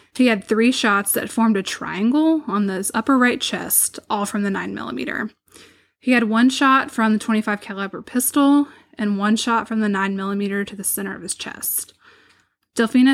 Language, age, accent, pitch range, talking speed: English, 10-29, American, 200-255 Hz, 180 wpm